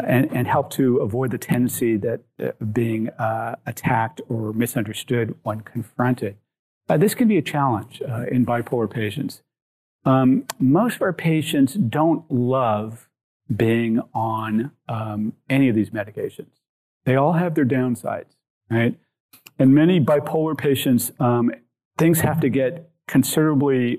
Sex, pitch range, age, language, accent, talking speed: male, 115-140 Hz, 50-69, English, American, 140 wpm